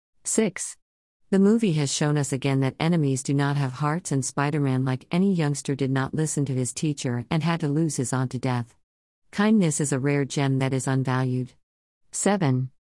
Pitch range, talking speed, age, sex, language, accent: 130-150 Hz, 190 wpm, 50-69, female, English, American